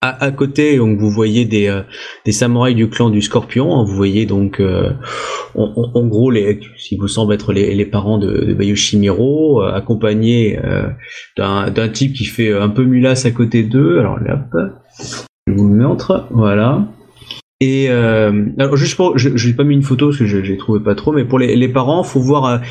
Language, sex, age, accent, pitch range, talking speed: French, male, 20-39, French, 110-135 Hz, 210 wpm